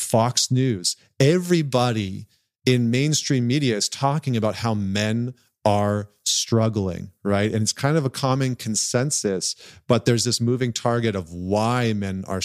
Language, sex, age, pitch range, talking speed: English, male, 40-59, 110-135 Hz, 145 wpm